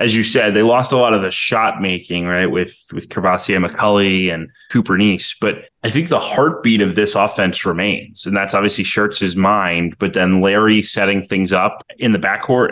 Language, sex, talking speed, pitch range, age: English, male, 200 wpm, 95-105 Hz, 20-39